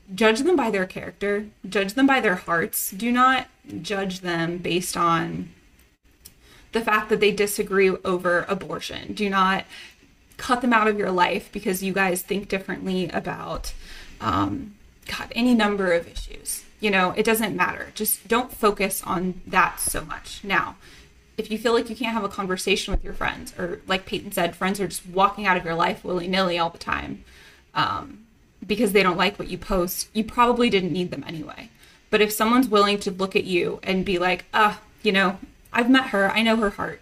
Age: 20-39